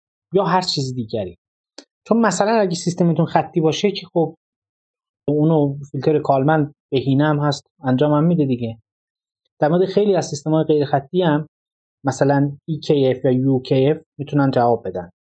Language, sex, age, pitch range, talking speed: Persian, male, 30-49, 140-185 Hz, 155 wpm